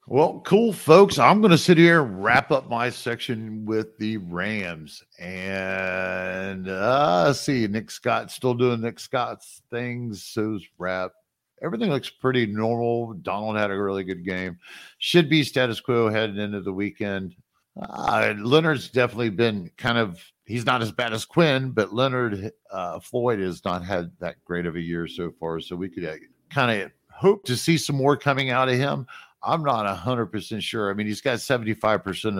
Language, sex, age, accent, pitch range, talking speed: English, male, 50-69, American, 95-125 Hz, 185 wpm